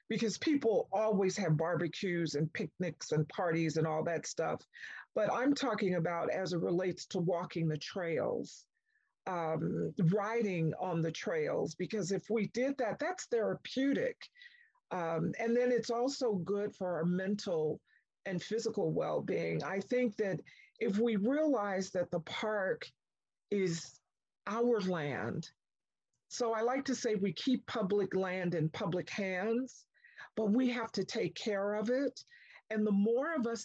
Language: English